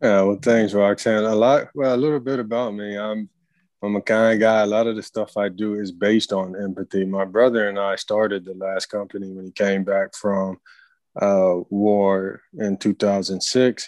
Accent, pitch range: American, 95-110 Hz